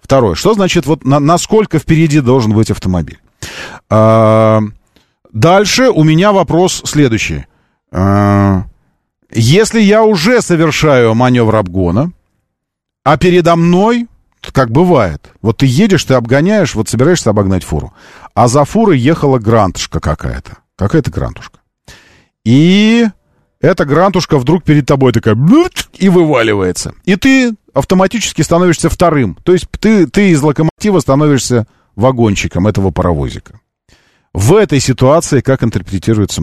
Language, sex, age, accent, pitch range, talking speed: Russian, male, 40-59, native, 110-175 Hz, 115 wpm